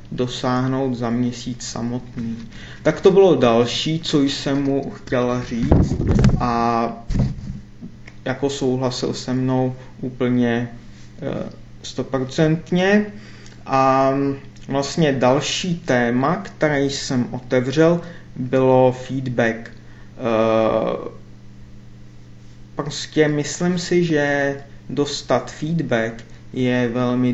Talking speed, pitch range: 80 wpm, 115-140 Hz